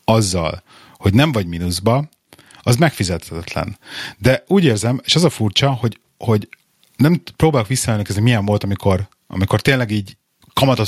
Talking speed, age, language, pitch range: 145 wpm, 30-49, Hungarian, 95-125 Hz